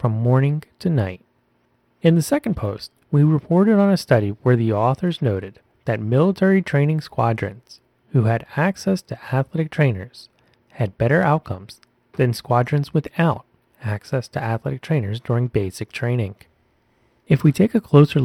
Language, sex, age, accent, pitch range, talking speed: English, male, 30-49, American, 115-160 Hz, 150 wpm